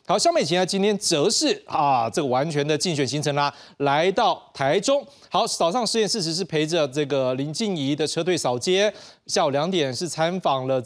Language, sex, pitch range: Chinese, male, 140-200 Hz